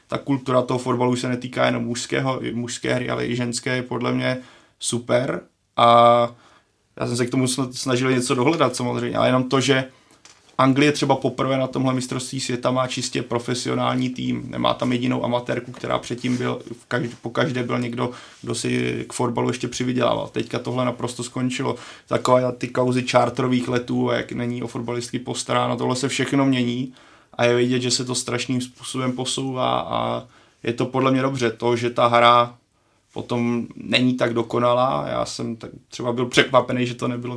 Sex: male